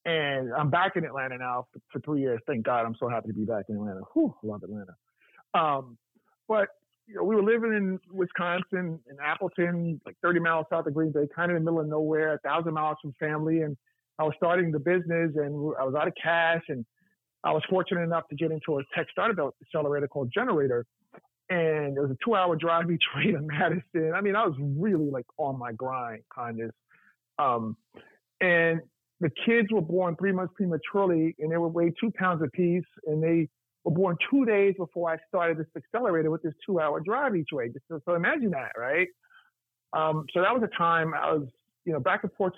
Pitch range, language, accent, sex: 150-180 Hz, English, American, male